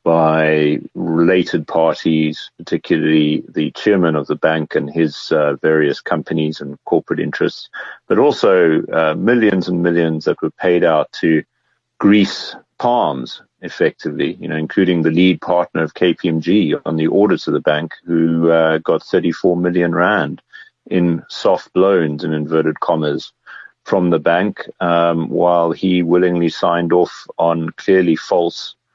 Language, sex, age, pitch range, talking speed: English, male, 40-59, 80-90 Hz, 145 wpm